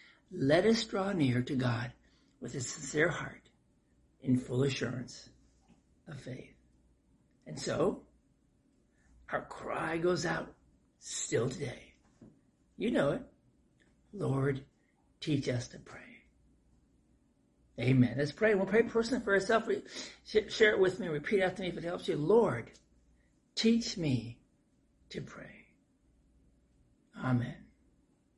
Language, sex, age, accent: English, male, 60-79, American